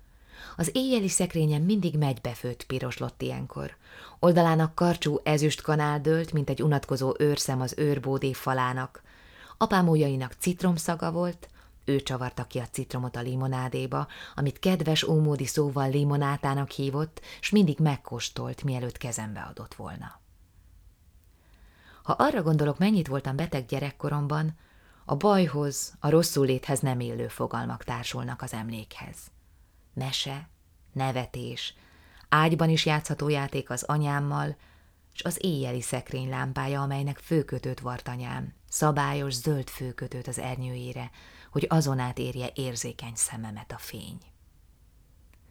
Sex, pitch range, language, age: female, 120-150 Hz, Hungarian, 20-39